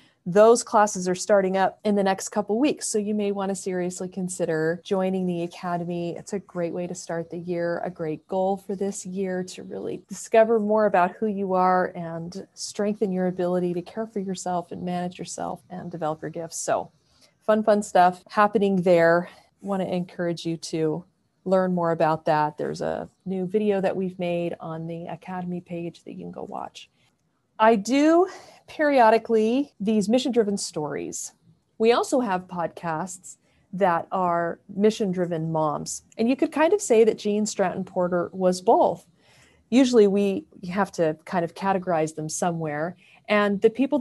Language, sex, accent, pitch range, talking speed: English, female, American, 170-210 Hz, 170 wpm